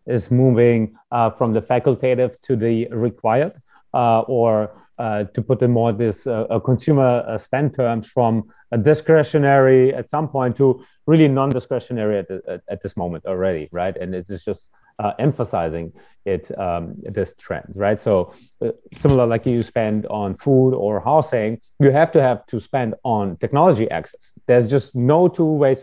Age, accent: 30-49, German